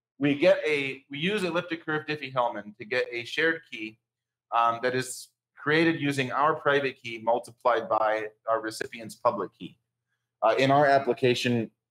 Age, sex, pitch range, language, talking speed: 30-49, male, 110-140 Hz, English, 155 wpm